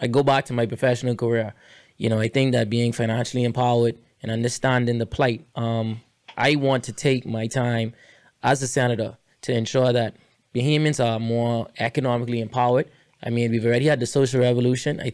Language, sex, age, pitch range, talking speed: English, male, 20-39, 115-130 Hz, 180 wpm